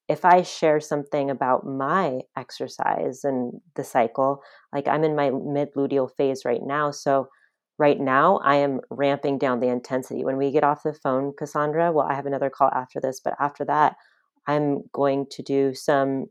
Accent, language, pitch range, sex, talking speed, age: American, English, 140-170 Hz, female, 185 wpm, 30-49